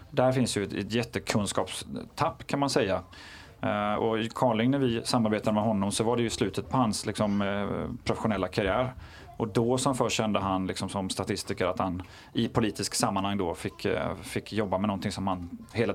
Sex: male